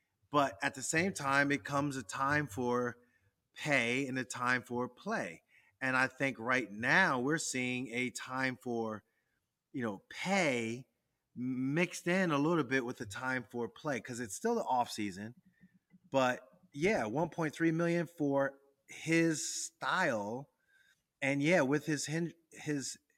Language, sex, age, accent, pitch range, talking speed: English, male, 30-49, American, 125-165 Hz, 145 wpm